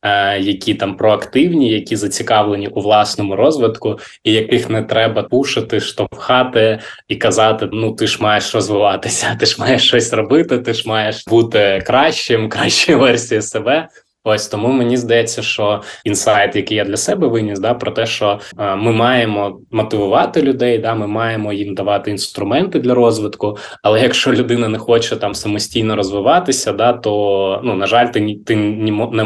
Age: 20-39